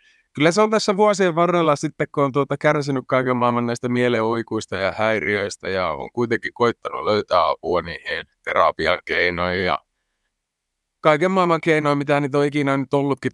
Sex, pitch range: male, 105-140 Hz